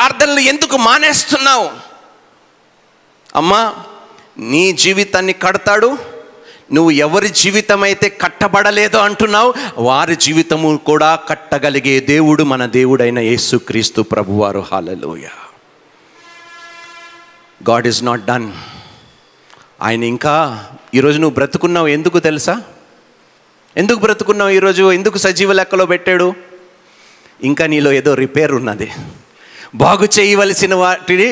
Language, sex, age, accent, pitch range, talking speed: Telugu, male, 40-59, native, 135-210 Hz, 95 wpm